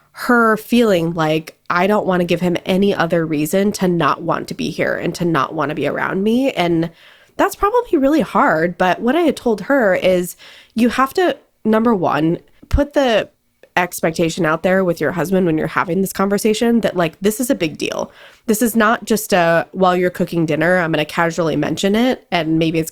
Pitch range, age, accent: 165-210 Hz, 20-39, American